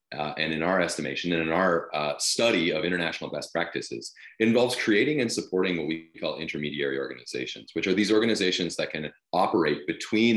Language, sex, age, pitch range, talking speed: English, male, 30-49, 70-95 Hz, 185 wpm